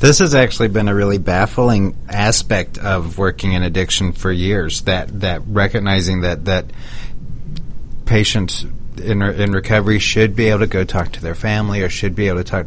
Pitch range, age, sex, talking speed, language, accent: 90-110 Hz, 40-59, male, 185 wpm, English, American